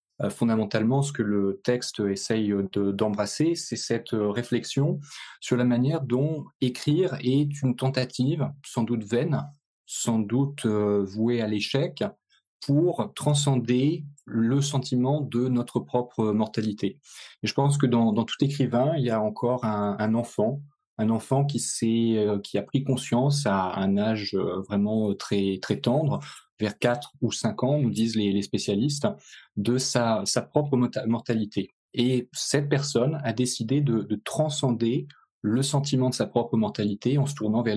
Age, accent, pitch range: 20-39, French, 110-135 Hz